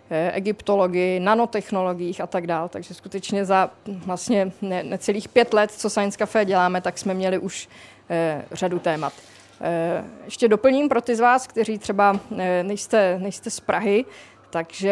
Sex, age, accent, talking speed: female, 20-39, native, 155 wpm